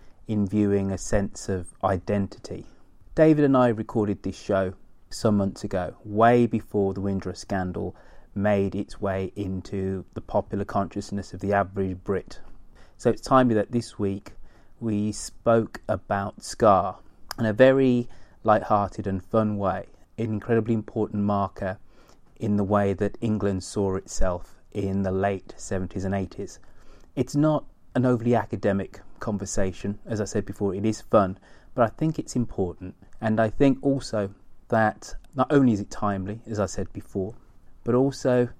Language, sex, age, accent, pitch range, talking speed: English, male, 30-49, British, 95-115 Hz, 155 wpm